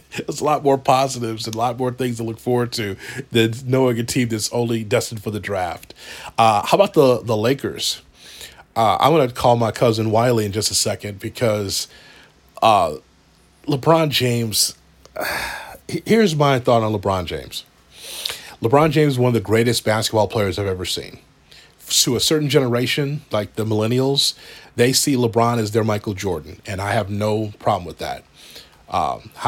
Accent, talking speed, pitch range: American, 175 wpm, 105-125 Hz